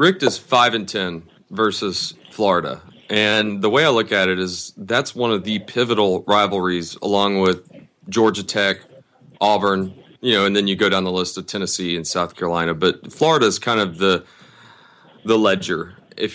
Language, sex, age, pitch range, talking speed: English, male, 30-49, 95-120 Hz, 180 wpm